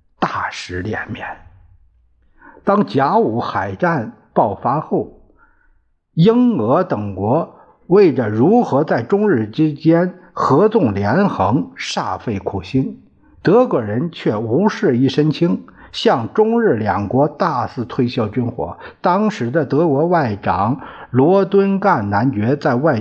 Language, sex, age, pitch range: Chinese, male, 50-69, 110-180 Hz